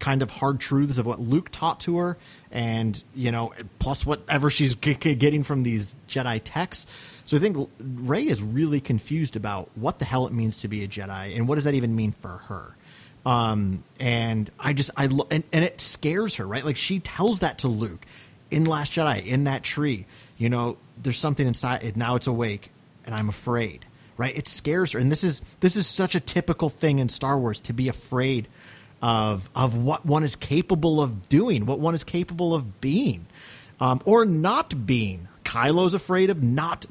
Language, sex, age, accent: English, male, 30-49, American